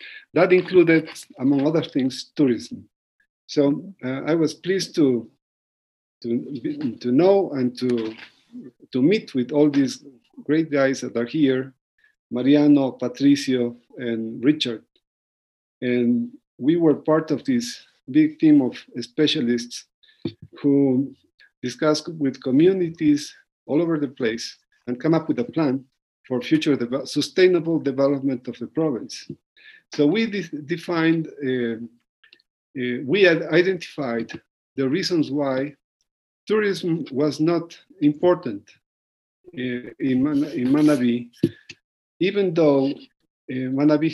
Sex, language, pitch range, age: male, Spanish, 130-180 Hz, 50-69